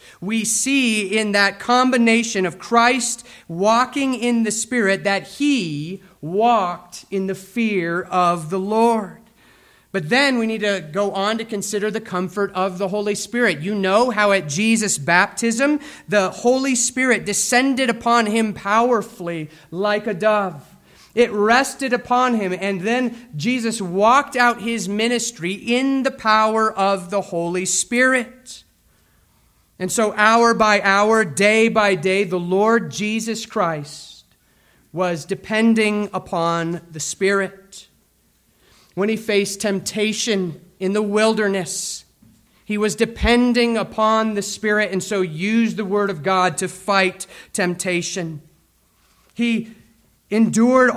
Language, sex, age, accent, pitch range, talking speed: English, male, 30-49, American, 190-230 Hz, 130 wpm